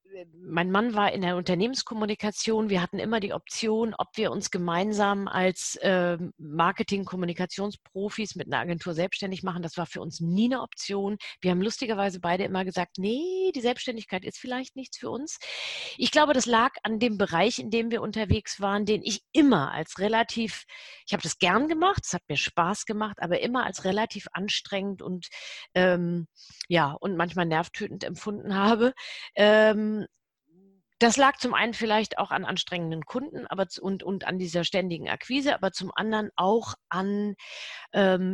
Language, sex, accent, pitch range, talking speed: German, female, German, 180-220 Hz, 165 wpm